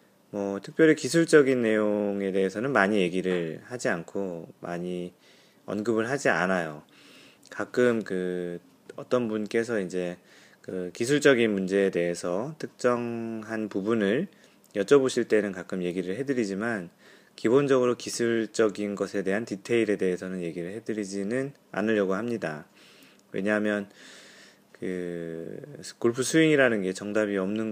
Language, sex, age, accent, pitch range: Korean, male, 30-49, native, 90-115 Hz